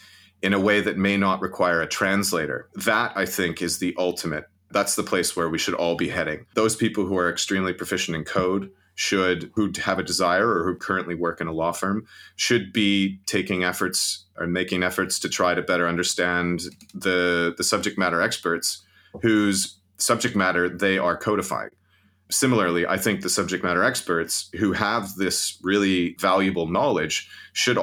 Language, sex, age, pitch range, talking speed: English, male, 30-49, 90-100 Hz, 175 wpm